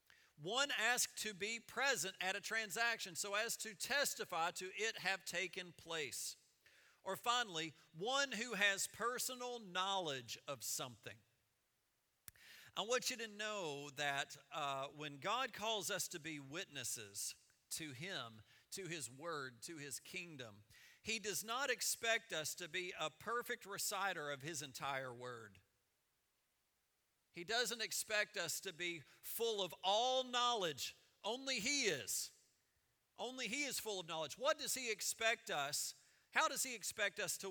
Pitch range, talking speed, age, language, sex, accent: 160-235 Hz, 145 wpm, 50-69, English, male, American